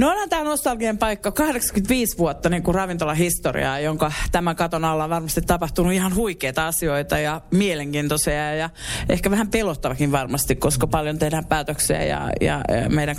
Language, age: Finnish, 30-49